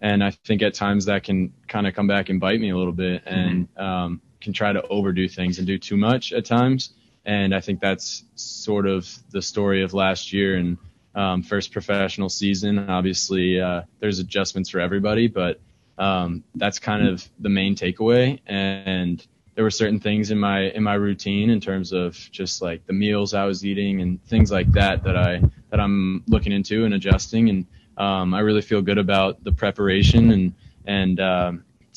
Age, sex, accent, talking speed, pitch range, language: 20-39, male, American, 195 wpm, 95-105 Hz, English